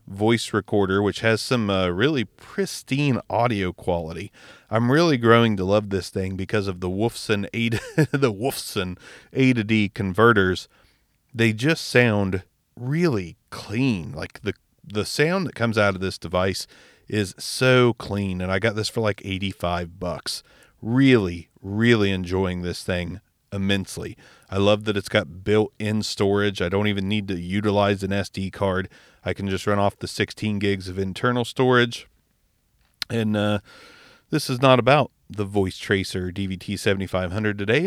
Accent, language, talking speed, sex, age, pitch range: American, English, 155 wpm, male, 30-49, 95-125 Hz